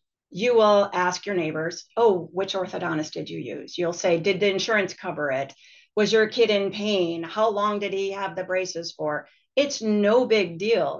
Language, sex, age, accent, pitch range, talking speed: English, female, 40-59, American, 165-200 Hz, 190 wpm